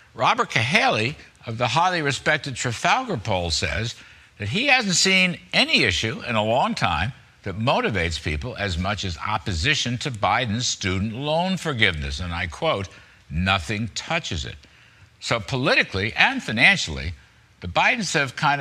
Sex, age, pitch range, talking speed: male, 60-79, 95-140 Hz, 145 wpm